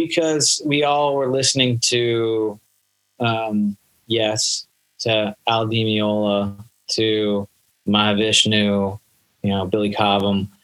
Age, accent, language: 30-49, American, English